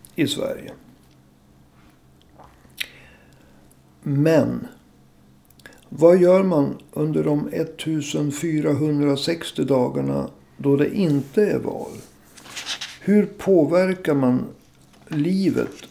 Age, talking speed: 60-79, 70 wpm